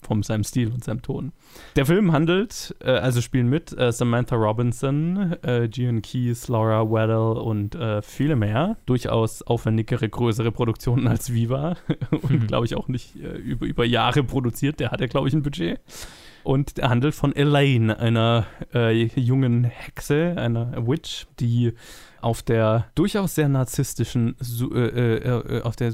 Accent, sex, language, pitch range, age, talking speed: German, male, German, 115-130 Hz, 20-39, 155 wpm